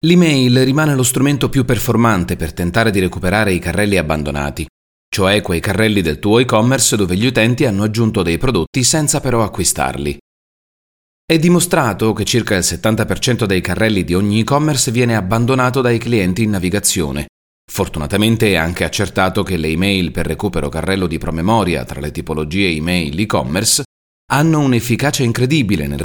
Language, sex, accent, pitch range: Italian, male, native, 90-125 Hz